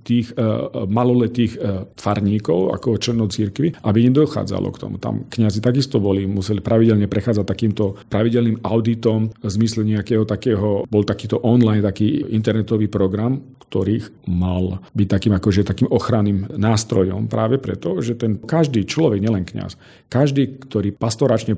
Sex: male